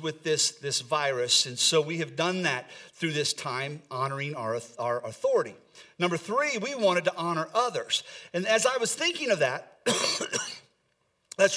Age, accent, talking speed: 40-59, American, 165 wpm